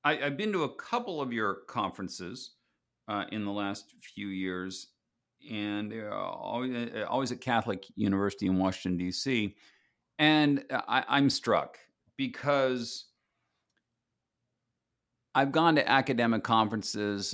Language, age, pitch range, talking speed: English, 50-69, 95-125 Hz, 120 wpm